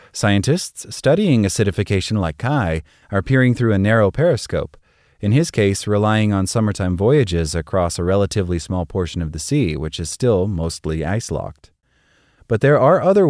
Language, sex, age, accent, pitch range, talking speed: English, male, 30-49, American, 90-115 Hz, 160 wpm